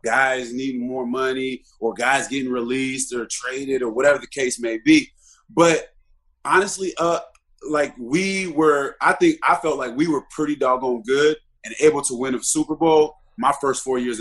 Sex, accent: male, American